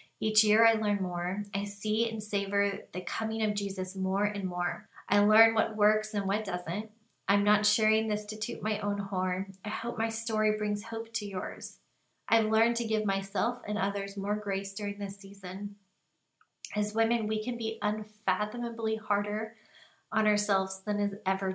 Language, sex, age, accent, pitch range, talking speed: English, female, 20-39, American, 195-220 Hz, 180 wpm